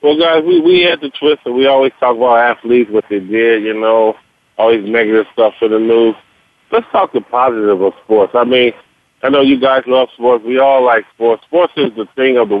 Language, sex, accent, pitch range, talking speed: English, male, American, 115-135 Hz, 235 wpm